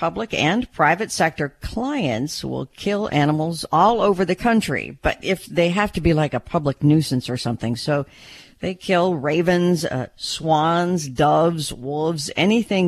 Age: 50-69